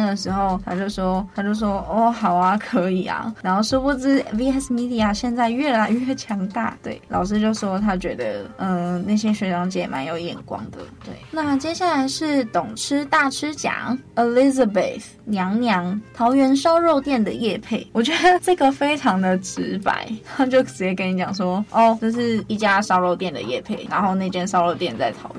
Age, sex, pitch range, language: 20-39, female, 200-270 Hz, Chinese